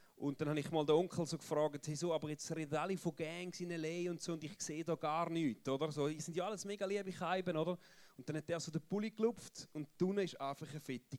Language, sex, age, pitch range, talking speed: German, male, 30-49, 160-210 Hz, 275 wpm